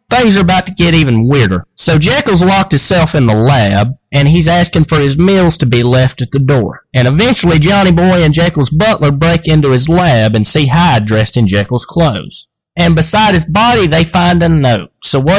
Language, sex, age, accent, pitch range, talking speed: English, male, 30-49, American, 130-185 Hz, 210 wpm